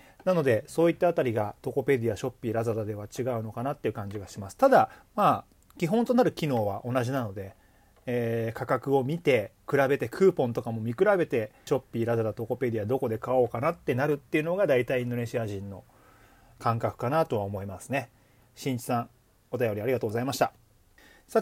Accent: native